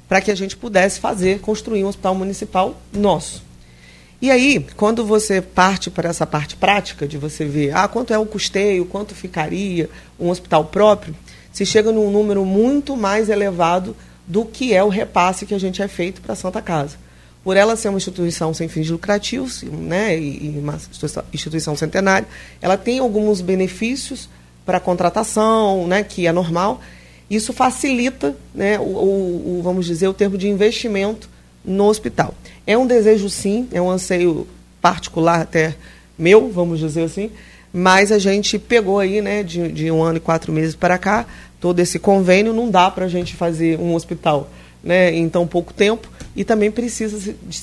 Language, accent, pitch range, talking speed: Portuguese, Brazilian, 170-210 Hz, 175 wpm